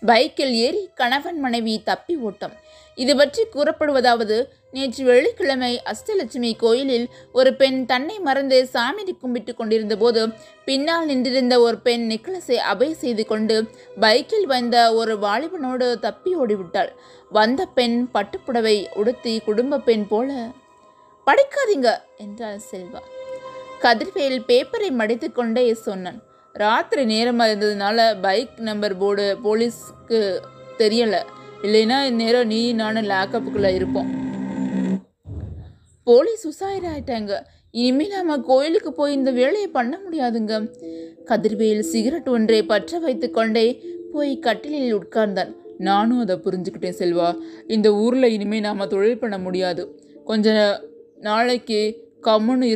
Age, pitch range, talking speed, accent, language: 20-39, 210-270 Hz, 110 wpm, native, Tamil